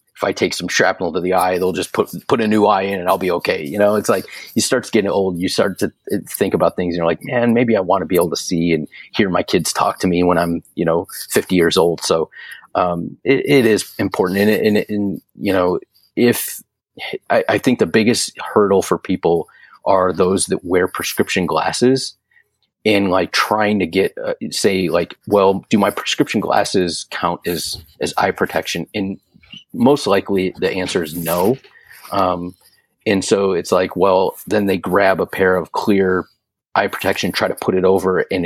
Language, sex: English, male